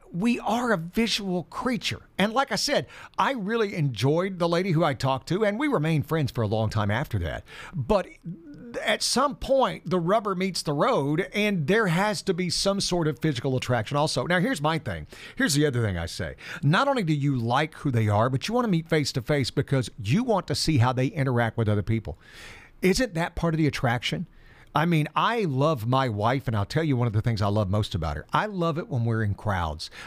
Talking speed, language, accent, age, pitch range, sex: 230 wpm, English, American, 50-69, 125-175 Hz, male